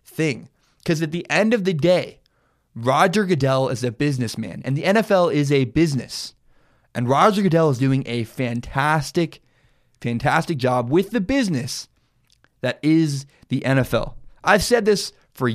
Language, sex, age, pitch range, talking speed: English, male, 20-39, 130-190 Hz, 150 wpm